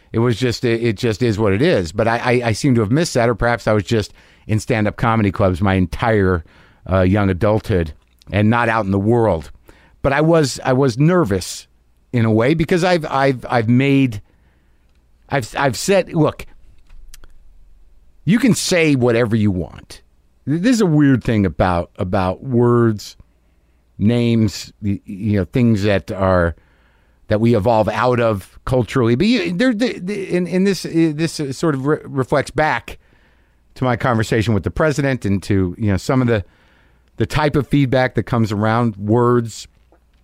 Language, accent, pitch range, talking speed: English, American, 95-155 Hz, 170 wpm